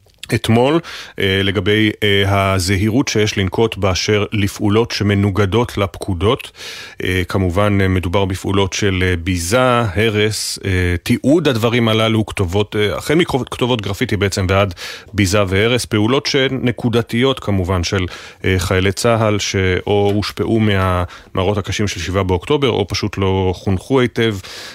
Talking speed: 110 wpm